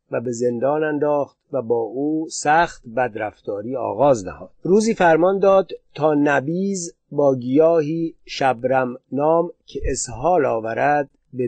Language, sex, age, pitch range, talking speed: Persian, male, 50-69, 130-165 Hz, 125 wpm